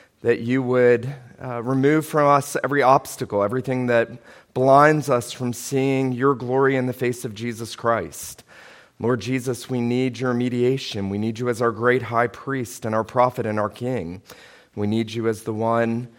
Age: 30-49